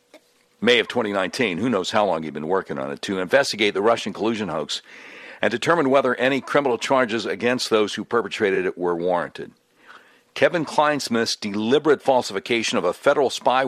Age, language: 60-79, English